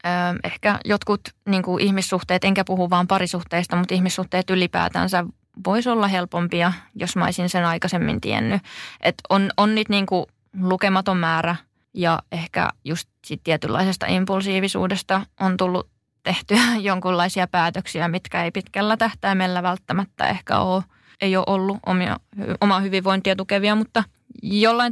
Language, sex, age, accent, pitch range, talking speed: Finnish, female, 20-39, native, 180-205 Hz, 130 wpm